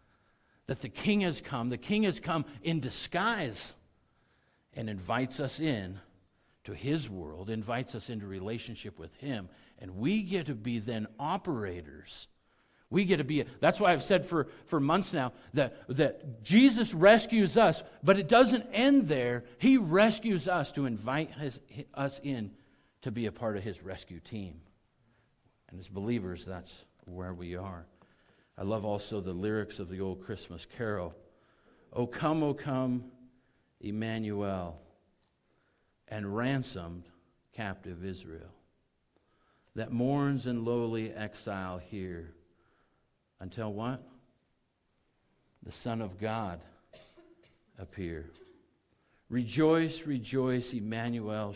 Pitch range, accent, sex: 95-145 Hz, American, male